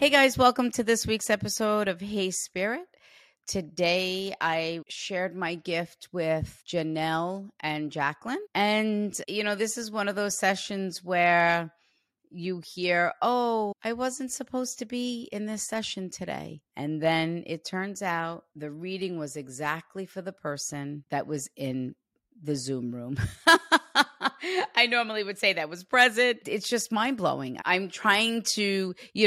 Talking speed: 150 wpm